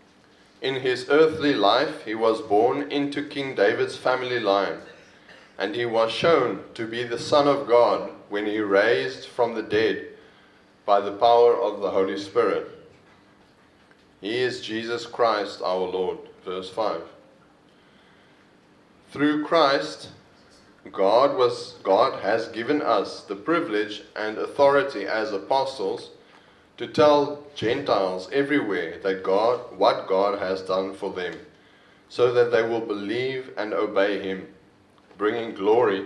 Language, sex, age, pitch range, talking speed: English, male, 30-49, 105-155 Hz, 130 wpm